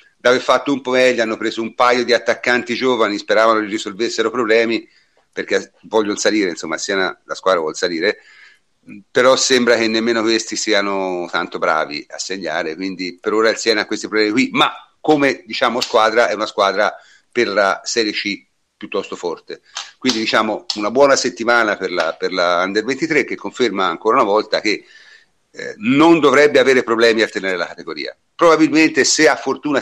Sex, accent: male, native